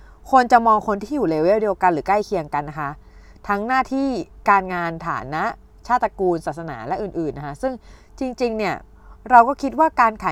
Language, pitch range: Thai, 185-245 Hz